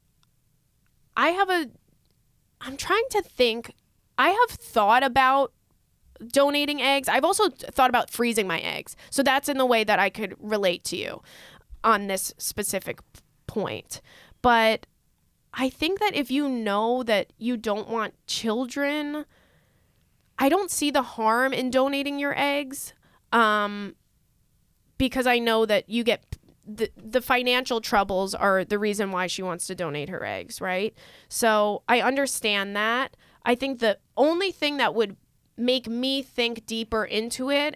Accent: American